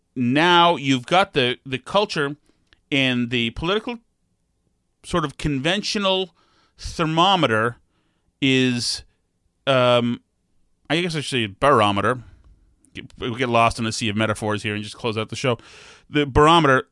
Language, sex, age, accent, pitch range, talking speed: English, male, 30-49, American, 110-140 Hz, 135 wpm